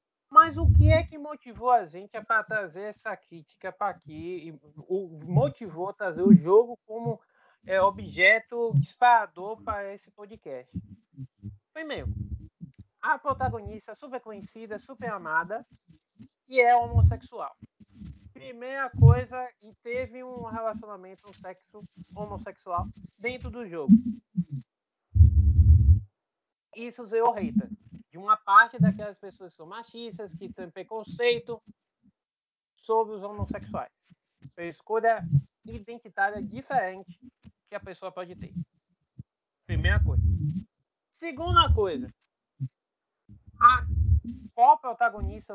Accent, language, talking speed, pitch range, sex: Brazilian, Portuguese, 105 wpm, 170-230 Hz, male